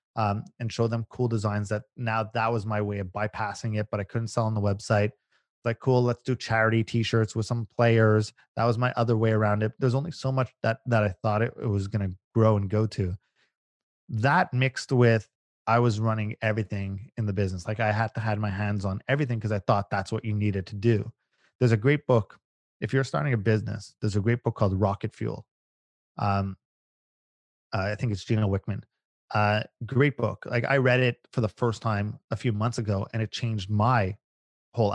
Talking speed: 215 wpm